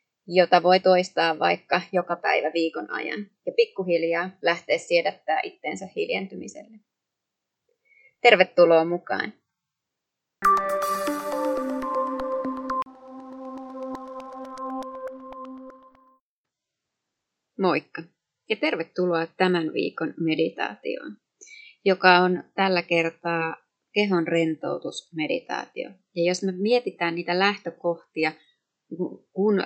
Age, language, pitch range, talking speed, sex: 30-49, Finnish, 165-245 Hz, 70 wpm, female